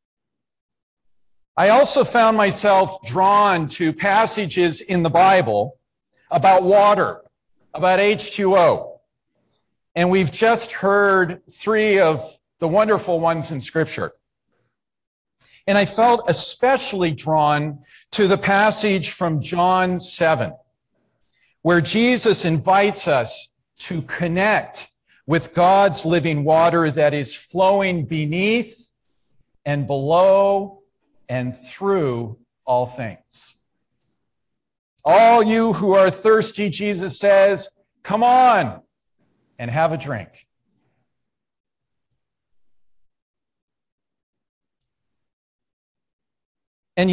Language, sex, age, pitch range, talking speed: English, male, 50-69, 155-200 Hz, 90 wpm